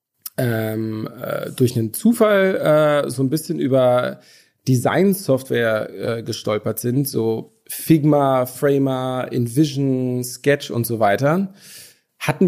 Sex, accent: male, German